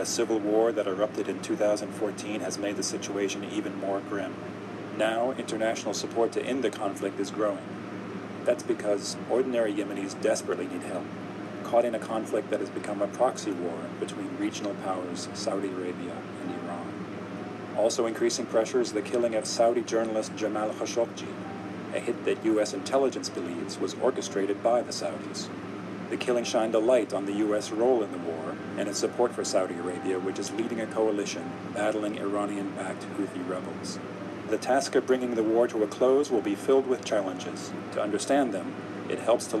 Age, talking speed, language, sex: 40-59, 175 wpm, English, male